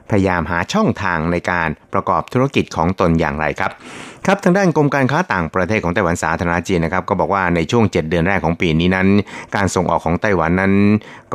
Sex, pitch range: male, 85-100 Hz